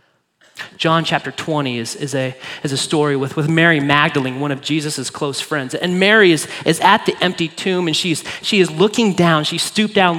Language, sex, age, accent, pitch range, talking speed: English, male, 30-49, American, 140-185 Hz, 205 wpm